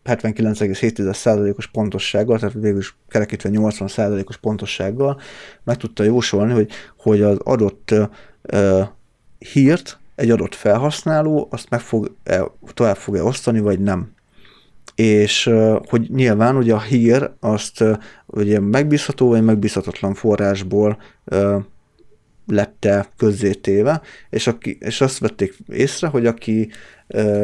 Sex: male